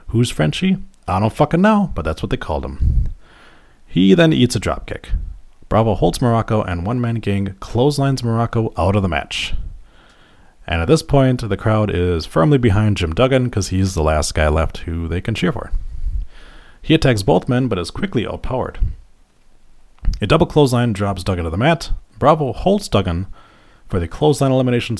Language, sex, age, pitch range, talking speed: English, male, 30-49, 85-120 Hz, 180 wpm